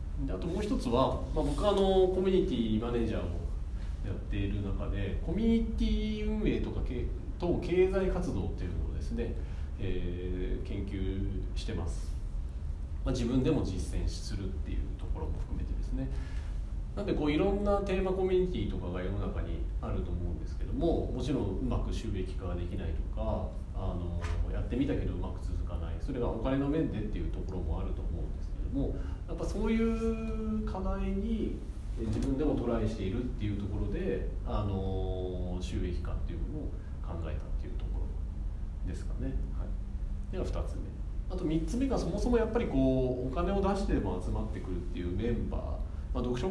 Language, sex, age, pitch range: Japanese, male, 40-59, 80-115 Hz